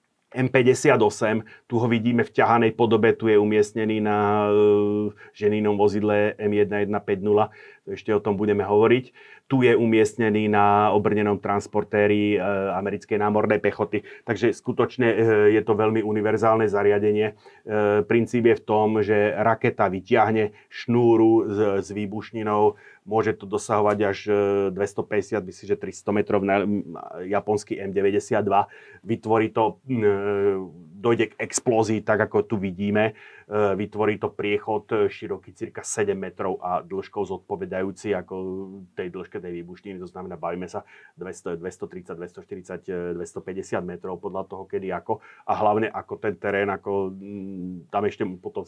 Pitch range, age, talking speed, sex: 100-110 Hz, 30-49, 130 wpm, male